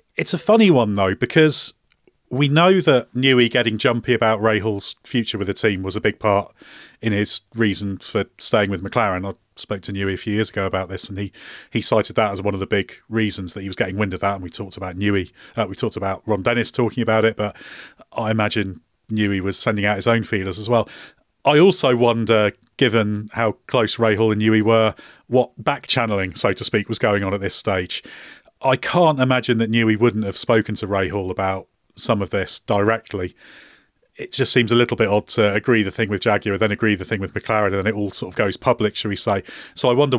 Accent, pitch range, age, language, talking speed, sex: British, 100-115 Hz, 30-49, English, 230 wpm, male